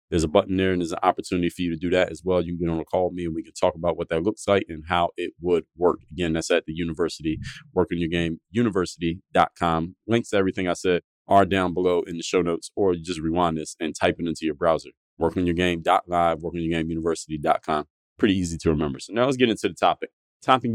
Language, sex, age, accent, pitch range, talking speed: English, male, 30-49, American, 85-110 Hz, 230 wpm